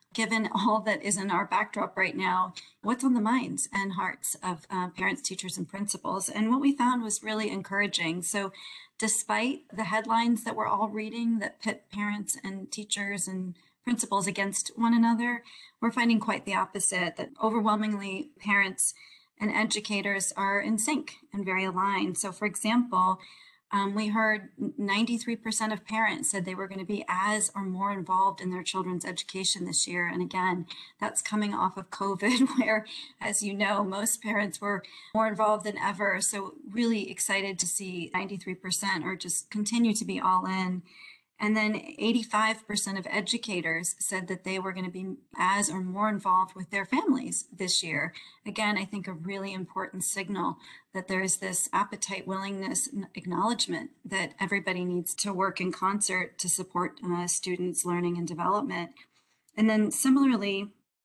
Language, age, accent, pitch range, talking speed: English, 40-59, American, 185-220 Hz, 165 wpm